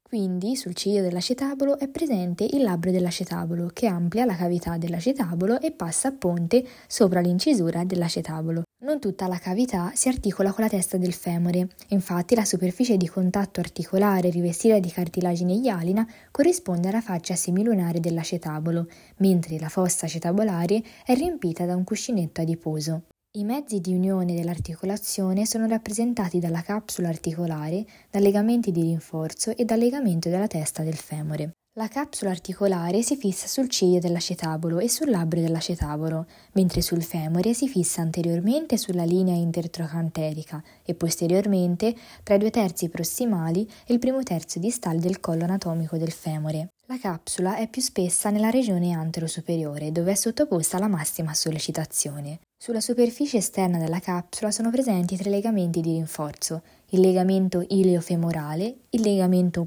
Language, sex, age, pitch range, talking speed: Italian, female, 20-39, 170-215 Hz, 150 wpm